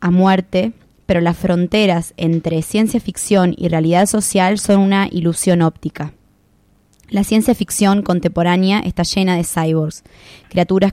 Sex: female